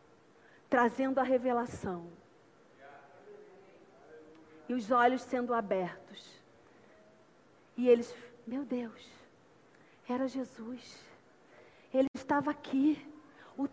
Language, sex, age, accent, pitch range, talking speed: Portuguese, female, 40-59, Brazilian, 255-330 Hz, 80 wpm